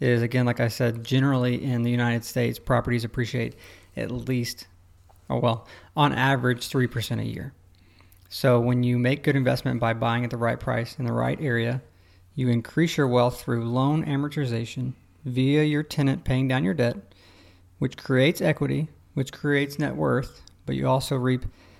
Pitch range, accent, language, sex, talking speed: 115-130 Hz, American, English, male, 170 wpm